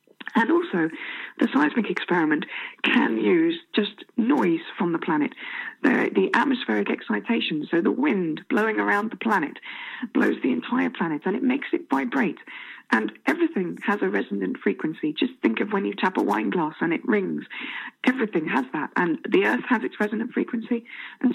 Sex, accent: female, British